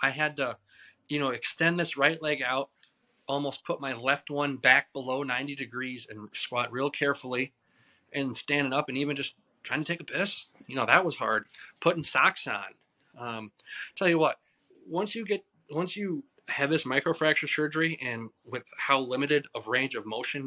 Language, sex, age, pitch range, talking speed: English, male, 20-39, 125-155 Hz, 185 wpm